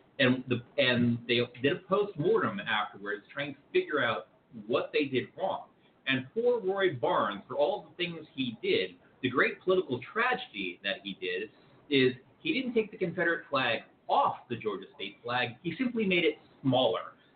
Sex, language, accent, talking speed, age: male, English, American, 170 wpm, 40-59